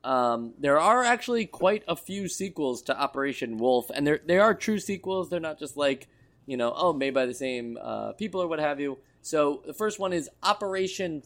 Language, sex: English, male